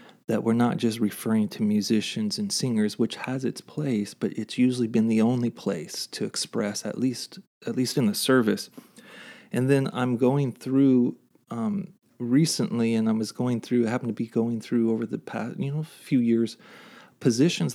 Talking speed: 190 wpm